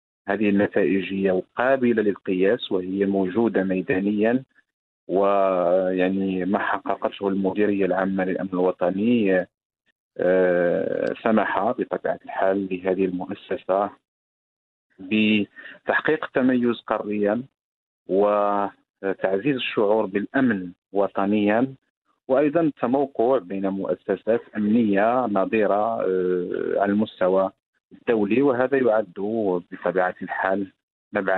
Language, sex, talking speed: English, male, 75 wpm